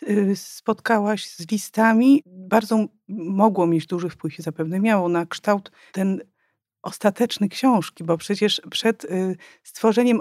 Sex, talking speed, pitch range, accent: female, 120 wpm, 190-230 Hz, native